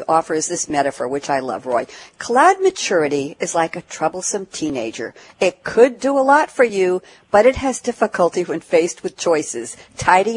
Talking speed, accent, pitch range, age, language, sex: 175 wpm, American, 160-230 Hz, 60-79, English, female